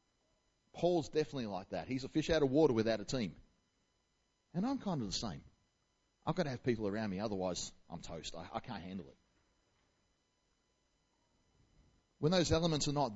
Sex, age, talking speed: male, 30-49, 180 wpm